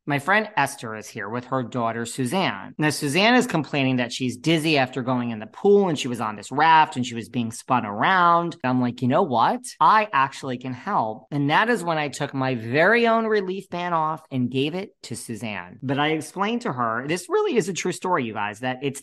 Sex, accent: male, American